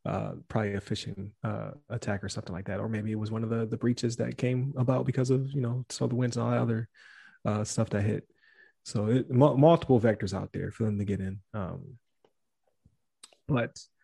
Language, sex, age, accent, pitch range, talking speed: English, male, 20-39, American, 105-125 Hz, 220 wpm